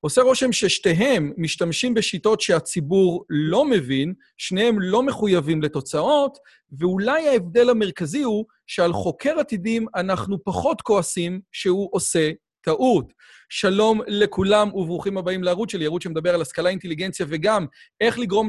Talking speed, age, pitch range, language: 125 wpm, 30-49, 165-210 Hz, Hebrew